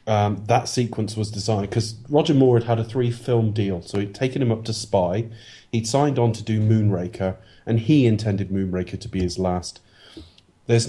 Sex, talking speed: male, 200 wpm